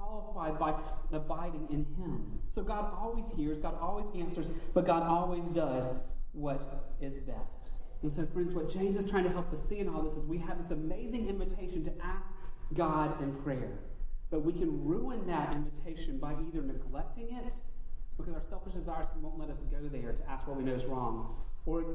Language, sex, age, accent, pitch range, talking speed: English, male, 30-49, American, 140-175 Hz, 195 wpm